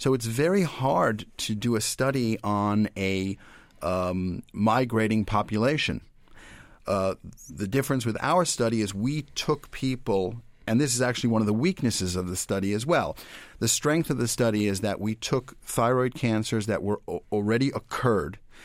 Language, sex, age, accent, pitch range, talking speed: English, male, 40-59, American, 105-130 Hz, 165 wpm